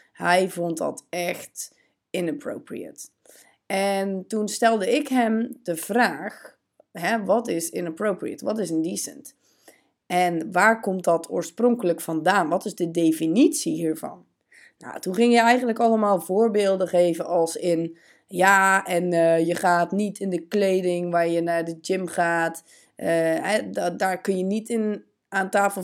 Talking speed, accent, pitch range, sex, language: 150 wpm, Dutch, 170-215 Hz, female, Dutch